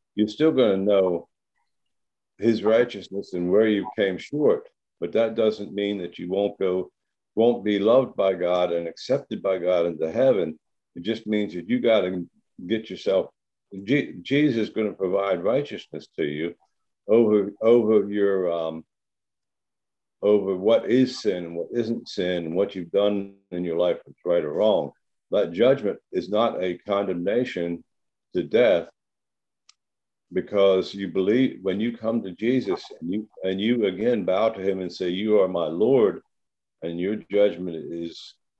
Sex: male